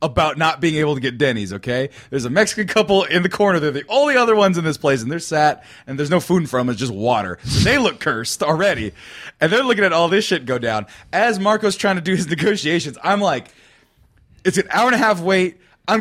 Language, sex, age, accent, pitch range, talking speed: English, male, 30-49, American, 140-200 Hz, 250 wpm